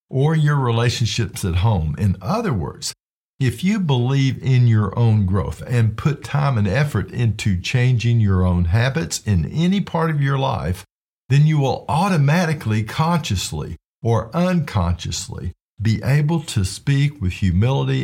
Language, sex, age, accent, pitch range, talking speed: English, male, 50-69, American, 95-135 Hz, 145 wpm